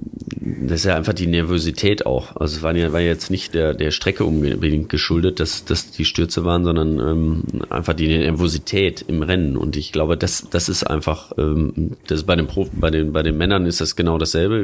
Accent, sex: German, male